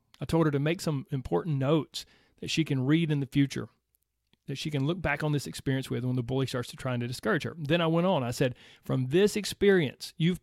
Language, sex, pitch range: English, male, 135-175 Hz